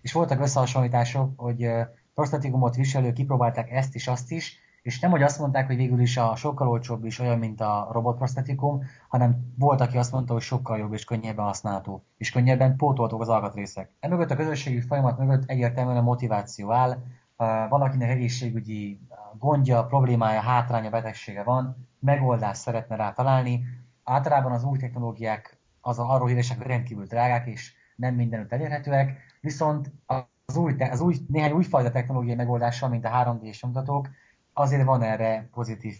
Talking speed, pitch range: 150 wpm, 115-135 Hz